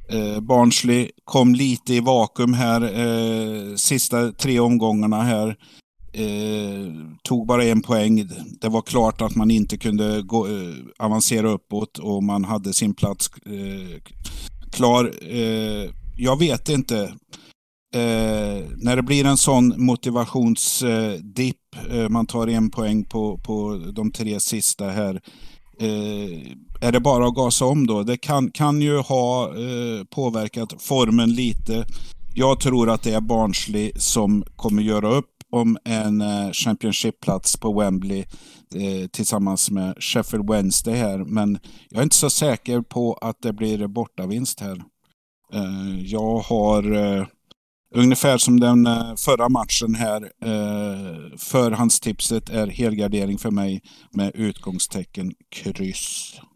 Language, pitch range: Swedish, 105-120 Hz